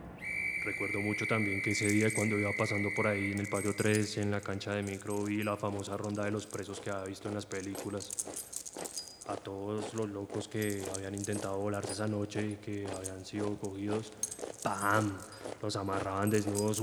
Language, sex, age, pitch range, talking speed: Spanish, male, 20-39, 100-105 Hz, 185 wpm